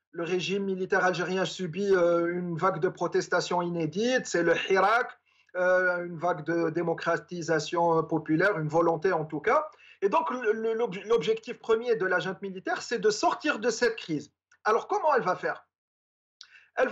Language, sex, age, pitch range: French, male, 40-59, 170-230 Hz